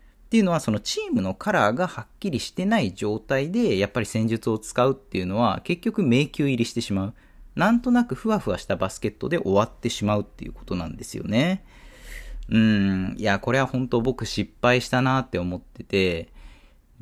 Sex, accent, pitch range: male, native, 100-155 Hz